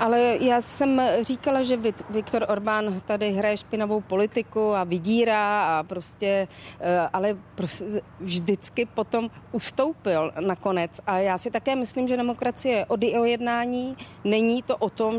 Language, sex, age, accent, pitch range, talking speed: Czech, female, 40-59, native, 190-225 Hz, 140 wpm